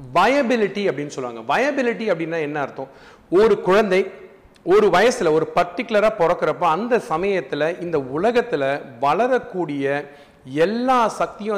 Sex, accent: male, native